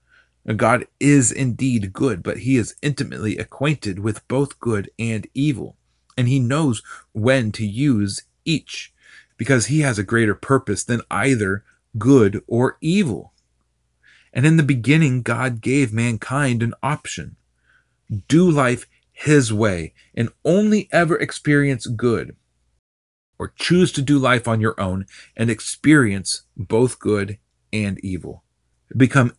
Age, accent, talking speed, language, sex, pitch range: 30-49, American, 135 wpm, English, male, 100-130 Hz